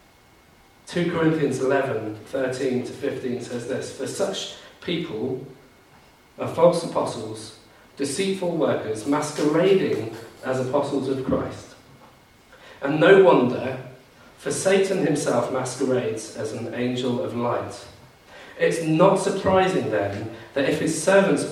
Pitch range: 110-155 Hz